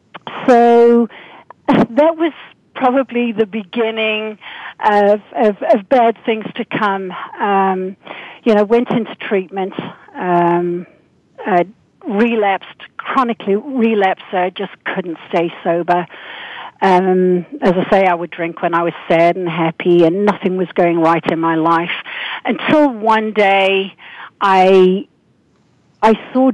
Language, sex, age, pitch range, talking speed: English, female, 50-69, 175-220 Hz, 125 wpm